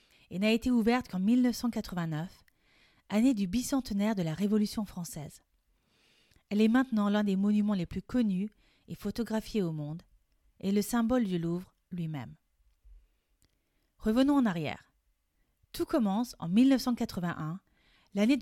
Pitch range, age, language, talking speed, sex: 180-245 Hz, 30-49, French, 130 wpm, female